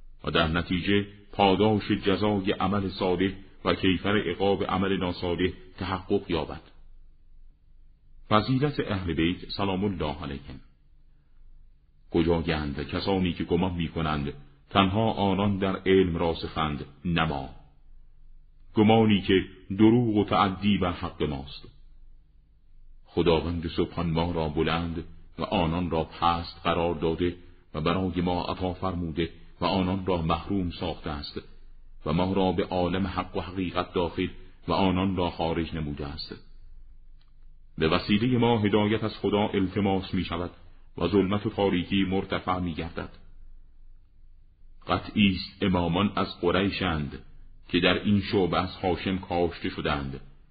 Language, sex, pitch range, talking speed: Persian, male, 80-95 Hz, 125 wpm